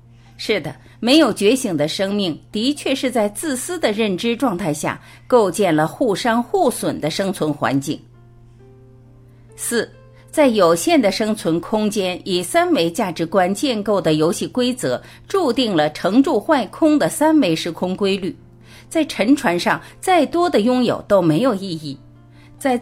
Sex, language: female, Chinese